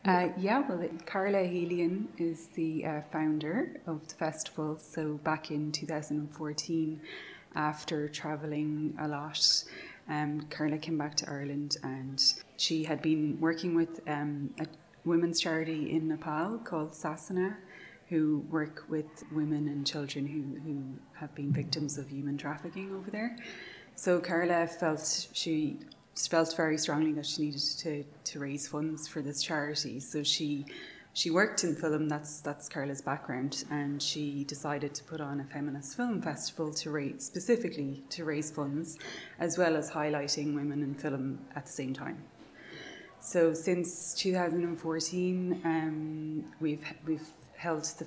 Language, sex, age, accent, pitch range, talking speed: English, female, 20-39, Irish, 150-165 Hz, 145 wpm